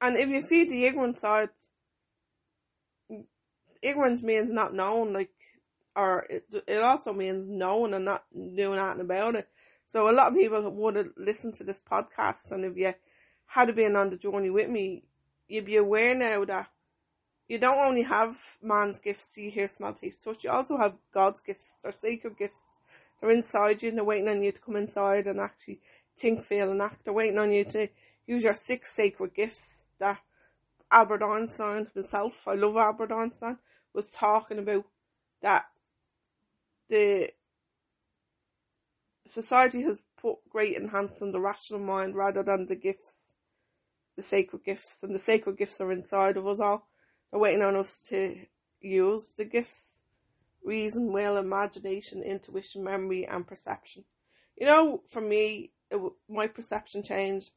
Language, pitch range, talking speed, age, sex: English, 200-235 Hz, 165 wpm, 20-39, female